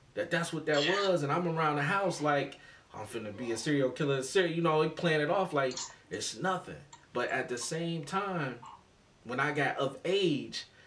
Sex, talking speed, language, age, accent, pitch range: male, 200 wpm, English, 30-49, American, 120-160 Hz